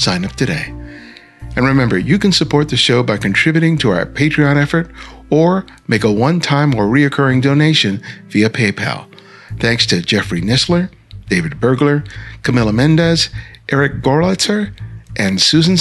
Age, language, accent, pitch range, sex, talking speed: 50-69, English, American, 110-145 Hz, male, 140 wpm